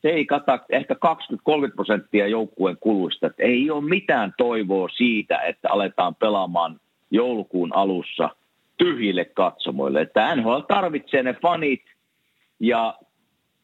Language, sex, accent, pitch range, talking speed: Finnish, male, native, 105-150 Hz, 115 wpm